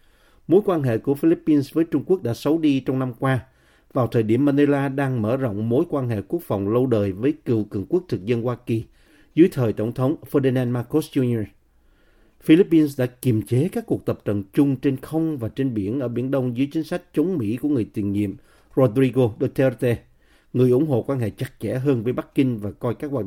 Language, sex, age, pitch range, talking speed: Vietnamese, male, 50-69, 110-145 Hz, 220 wpm